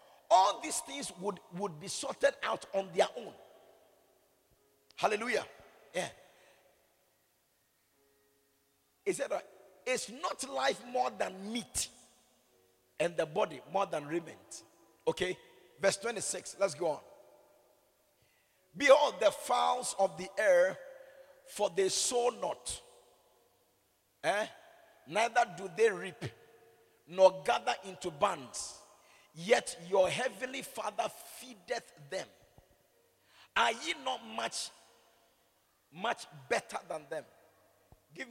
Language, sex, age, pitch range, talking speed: English, male, 50-69, 180-285 Hz, 105 wpm